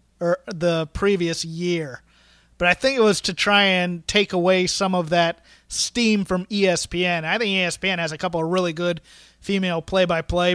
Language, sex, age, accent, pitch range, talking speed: English, male, 30-49, American, 170-195 Hz, 175 wpm